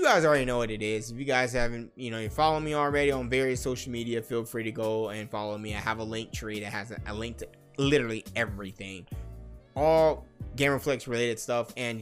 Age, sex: 20-39, male